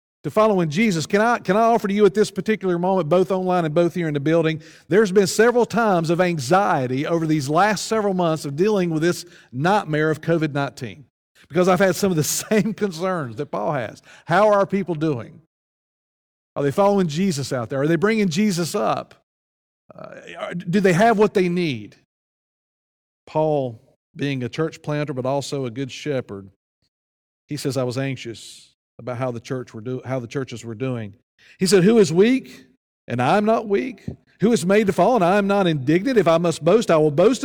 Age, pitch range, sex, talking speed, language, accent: 40-59, 130-190 Hz, male, 205 wpm, English, American